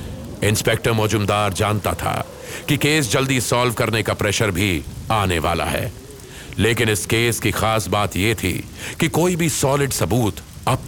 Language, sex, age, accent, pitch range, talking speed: Hindi, male, 40-59, native, 100-125 Hz, 155 wpm